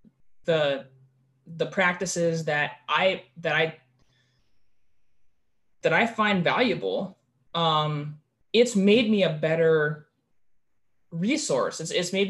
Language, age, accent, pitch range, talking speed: English, 20-39, American, 155-195 Hz, 100 wpm